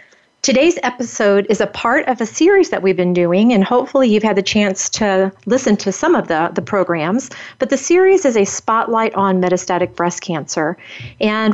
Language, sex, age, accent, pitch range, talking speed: English, female, 40-59, American, 180-235 Hz, 190 wpm